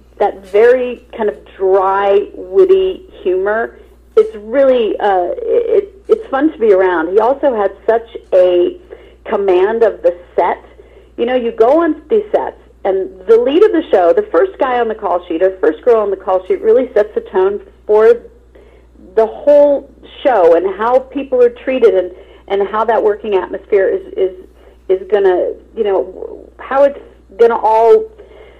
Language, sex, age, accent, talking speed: English, female, 40-59, American, 155 wpm